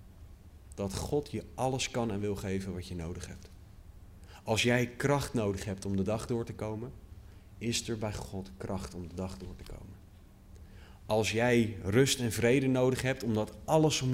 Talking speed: 185 wpm